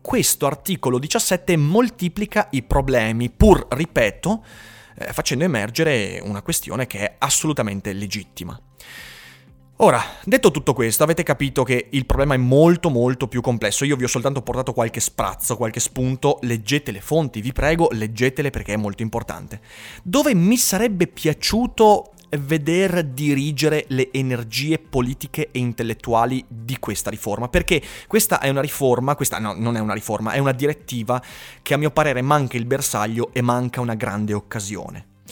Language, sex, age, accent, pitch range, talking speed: Italian, male, 30-49, native, 115-155 Hz, 150 wpm